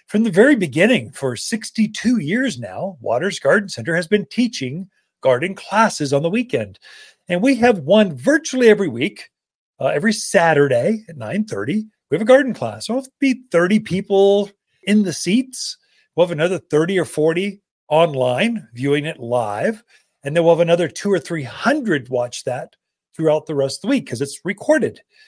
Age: 40-59